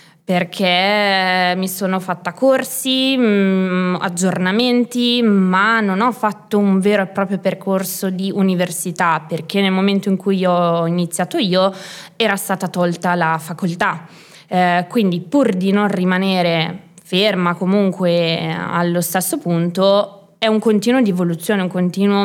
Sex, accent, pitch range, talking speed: female, native, 180-205 Hz, 130 wpm